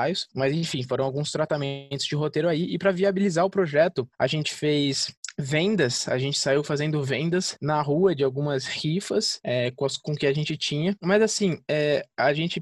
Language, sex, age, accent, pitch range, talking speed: Portuguese, male, 20-39, Brazilian, 140-195 Hz, 190 wpm